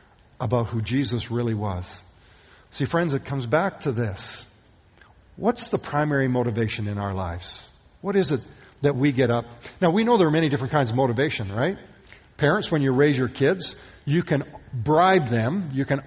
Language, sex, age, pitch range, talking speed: English, male, 50-69, 115-155 Hz, 185 wpm